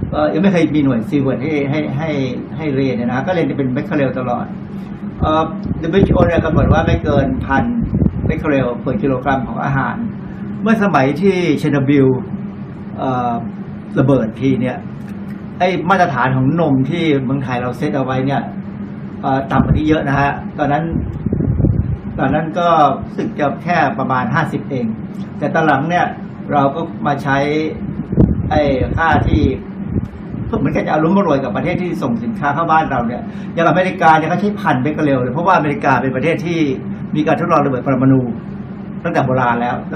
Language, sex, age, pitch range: Thai, male, 60-79, 140-190 Hz